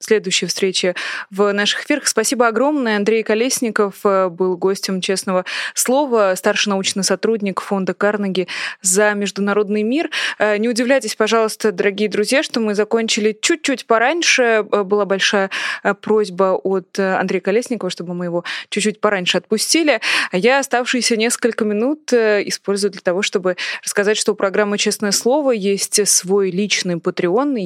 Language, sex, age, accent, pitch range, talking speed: Russian, female, 20-39, native, 190-225 Hz, 130 wpm